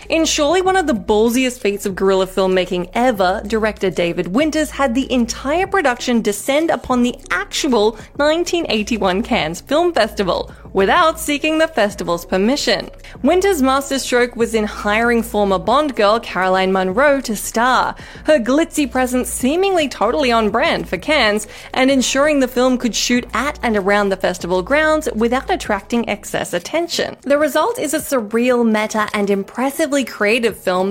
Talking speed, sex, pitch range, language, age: 150 wpm, female, 210-295 Hz, English, 20-39